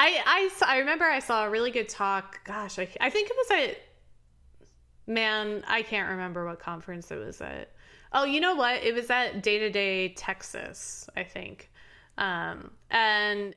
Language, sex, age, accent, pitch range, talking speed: English, female, 20-39, American, 180-220 Hz, 180 wpm